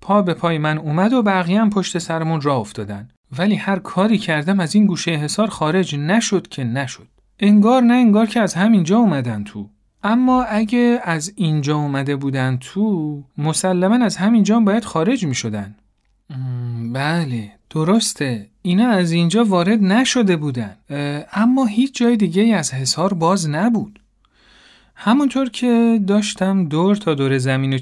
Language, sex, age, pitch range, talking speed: Persian, male, 40-59, 135-195 Hz, 145 wpm